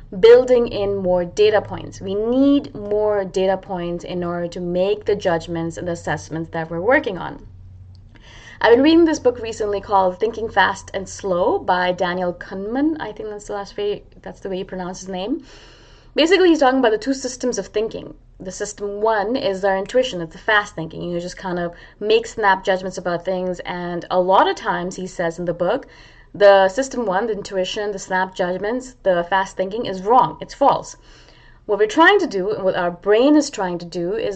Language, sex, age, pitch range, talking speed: English, female, 20-39, 180-235 Hz, 205 wpm